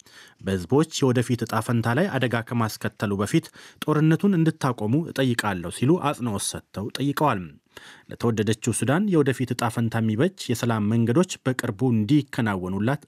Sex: male